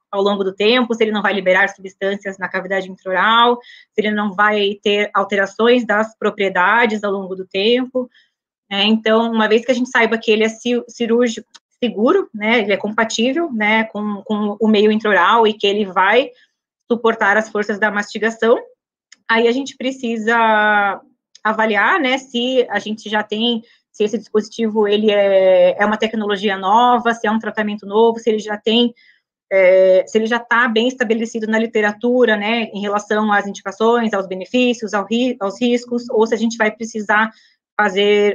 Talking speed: 175 wpm